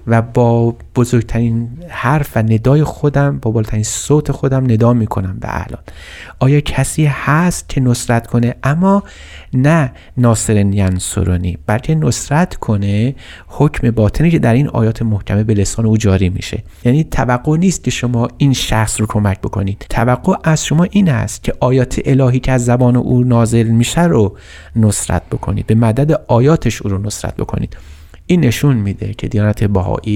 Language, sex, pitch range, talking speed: Persian, male, 100-130 Hz, 155 wpm